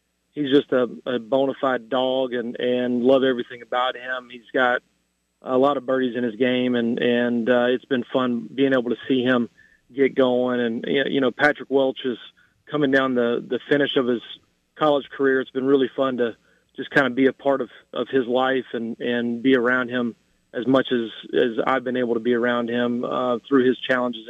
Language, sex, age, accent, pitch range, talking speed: English, male, 40-59, American, 125-140 Hz, 210 wpm